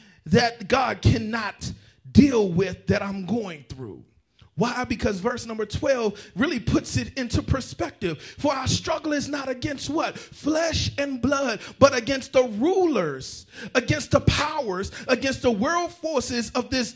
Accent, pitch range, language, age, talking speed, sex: American, 225-275 Hz, English, 40-59, 150 wpm, male